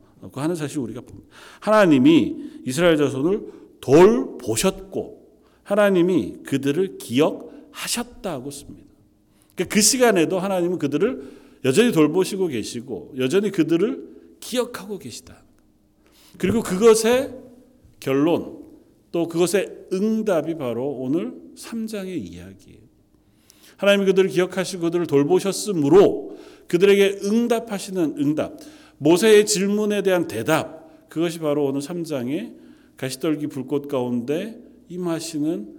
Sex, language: male, Korean